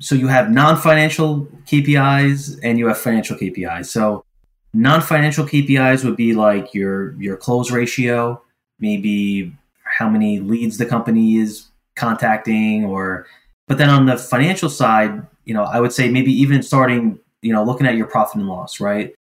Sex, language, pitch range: male, English, 110-145 Hz